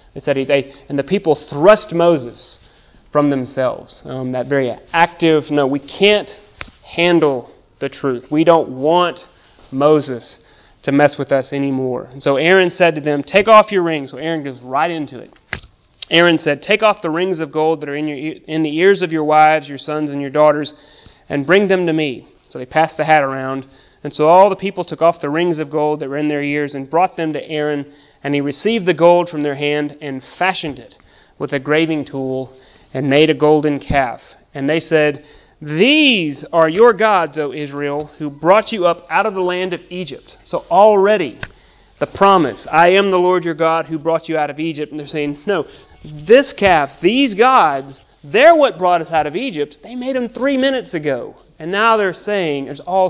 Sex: male